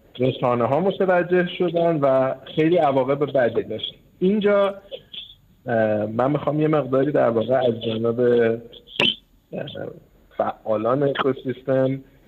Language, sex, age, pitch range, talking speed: Persian, male, 50-69, 115-150 Hz, 100 wpm